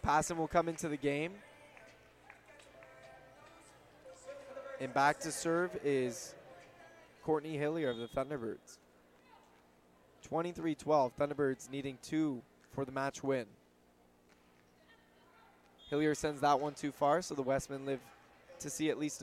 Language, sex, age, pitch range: English, male, 20-39, 135-155 Hz